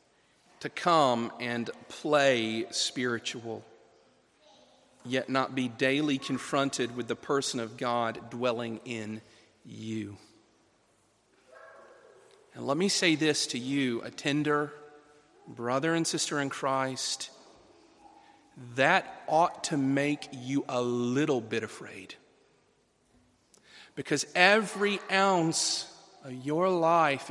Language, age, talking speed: English, 40-59, 105 wpm